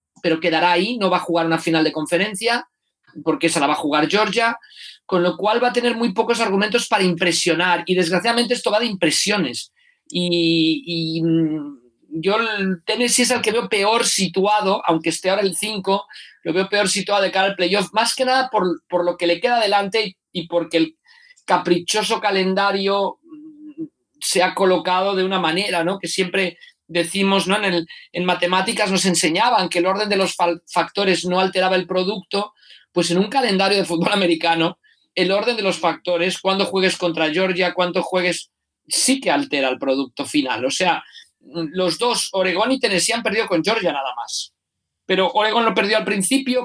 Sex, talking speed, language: male, 185 wpm, Spanish